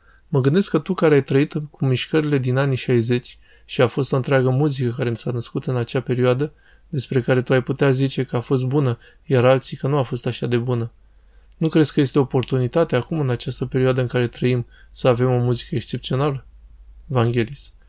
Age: 20-39